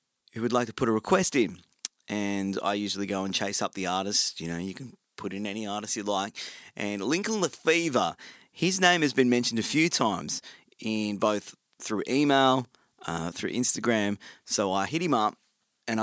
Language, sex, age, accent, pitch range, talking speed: English, male, 30-49, Australian, 110-150 Hz, 195 wpm